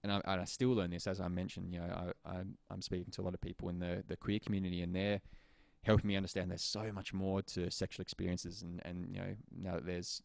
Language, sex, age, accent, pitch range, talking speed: English, male, 20-39, Australian, 90-110 Hz, 260 wpm